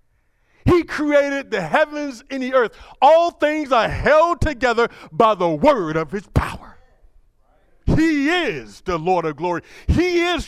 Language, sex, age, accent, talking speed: English, male, 50-69, American, 150 wpm